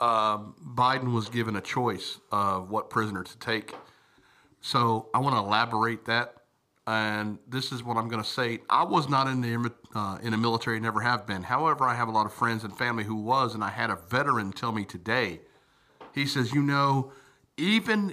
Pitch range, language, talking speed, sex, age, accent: 110-130 Hz, English, 205 wpm, male, 50-69, American